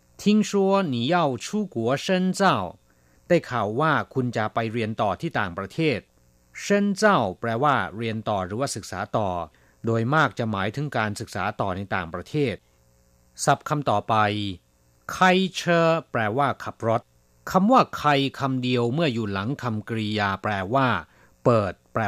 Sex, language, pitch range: male, Thai, 100-150 Hz